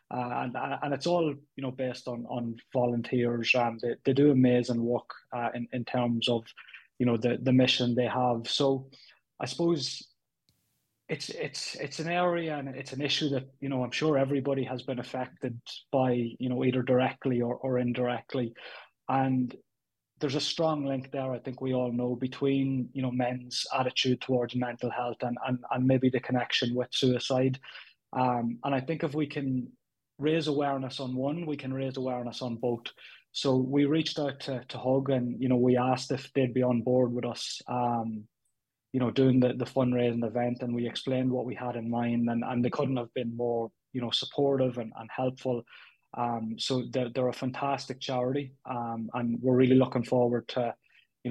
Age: 20-39